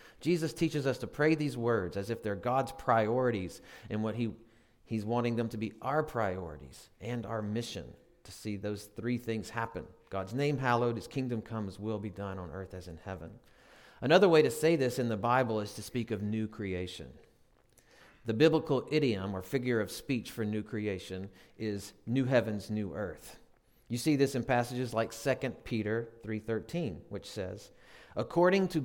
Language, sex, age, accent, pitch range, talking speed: English, male, 40-59, American, 105-125 Hz, 180 wpm